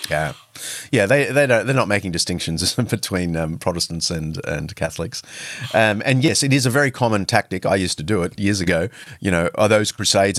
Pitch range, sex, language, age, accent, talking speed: 95-125 Hz, male, English, 30-49, Australian, 195 wpm